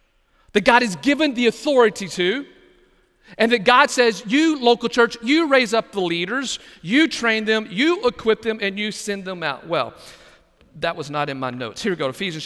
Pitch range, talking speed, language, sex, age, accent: 170-235 Hz, 195 wpm, English, male, 40-59, American